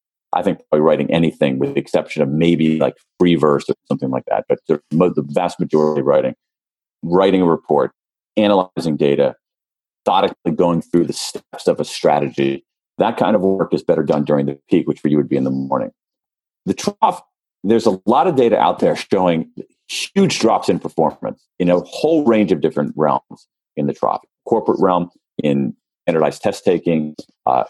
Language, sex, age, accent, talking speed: English, male, 40-59, American, 185 wpm